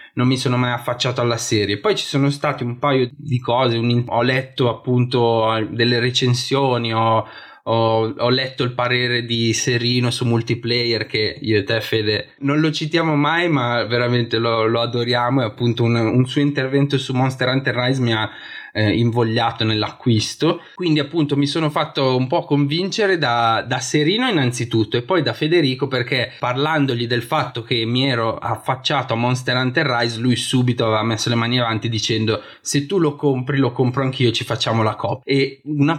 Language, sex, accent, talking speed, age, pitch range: Italian, male, native, 180 wpm, 20-39, 115-140 Hz